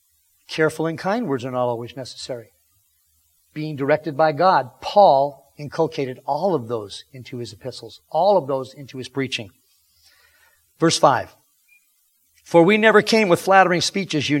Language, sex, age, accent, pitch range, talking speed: English, male, 50-69, American, 130-175 Hz, 150 wpm